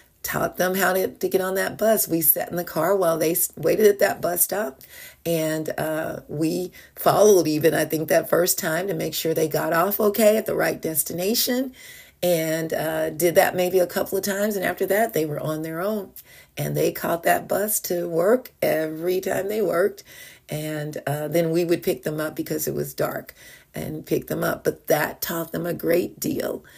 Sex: female